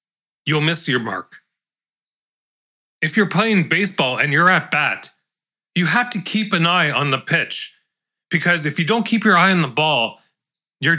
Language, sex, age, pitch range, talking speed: English, male, 30-49, 160-205 Hz, 175 wpm